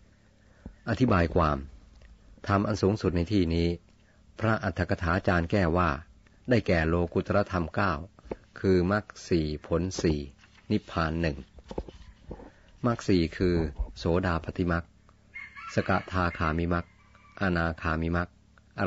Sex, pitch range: male, 85-100 Hz